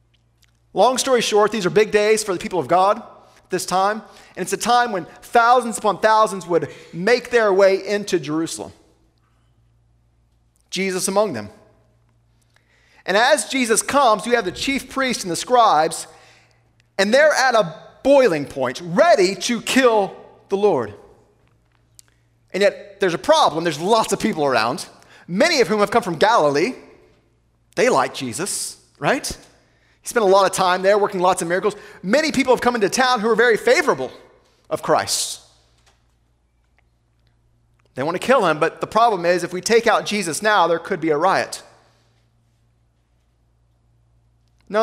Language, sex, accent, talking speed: English, male, American, 160 wpm